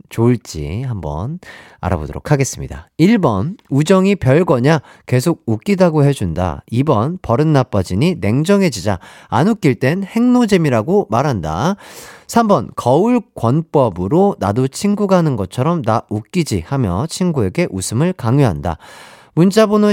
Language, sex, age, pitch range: Korean, male, 40-59, 105-170 Hz